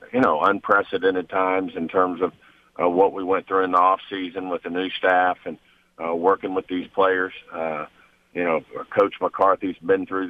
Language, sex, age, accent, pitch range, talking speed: English, male, 50-69, American, 90-95 Hz, 185 wpm